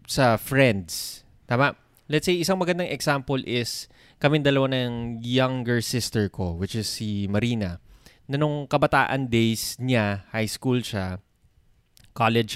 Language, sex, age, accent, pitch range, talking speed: Filipino, male, 20-39, native, 110-140 Hz, 130 wpm